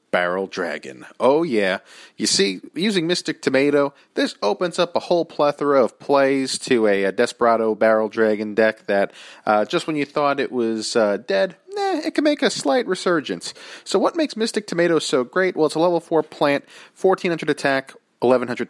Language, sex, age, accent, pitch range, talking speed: English, male, 40-59, American, 115-170 Hz, 185 wpm